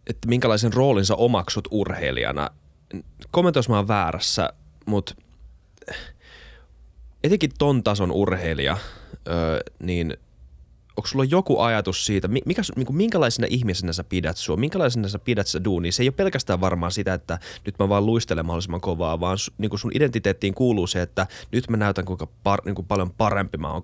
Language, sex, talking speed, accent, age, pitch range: Finnish, male, 155 wpm, native, 20-39, 85-110 Hz